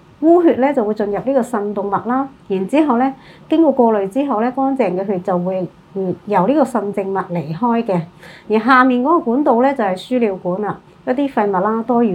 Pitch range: 180-235 Hz